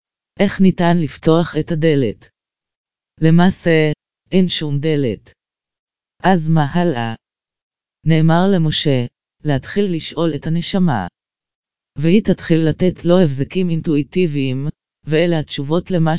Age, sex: 30-49, female